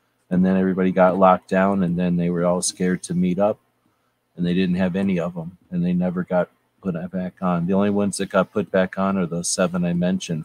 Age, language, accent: 40-59, English, American